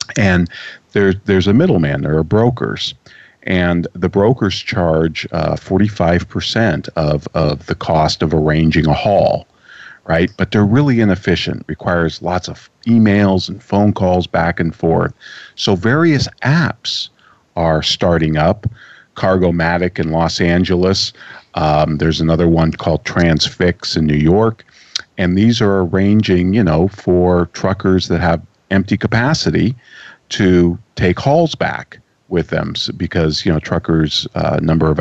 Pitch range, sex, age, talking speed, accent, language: 80-95 Hz, male, 50-69, 140 wpm, American, English